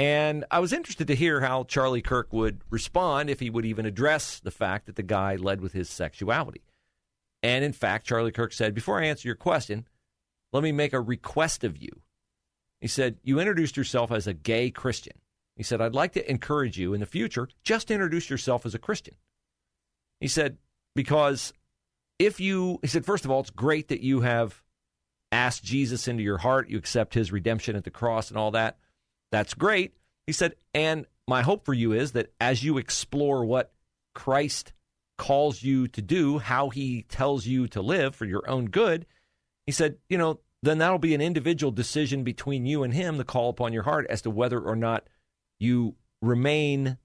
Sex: male